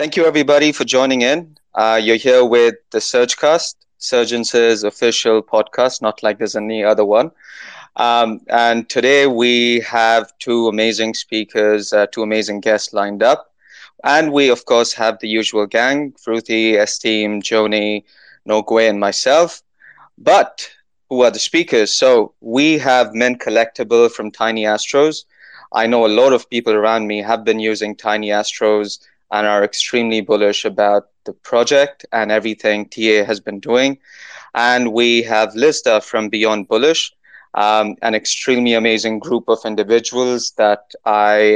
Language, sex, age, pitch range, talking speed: English, male, 20-39, 110-125 Hz, 150 wpm